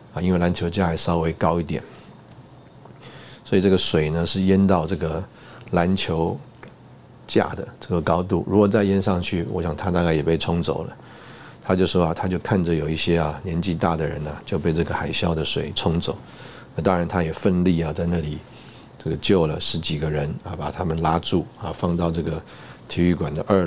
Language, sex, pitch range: Chinese, male, 80-95 Hz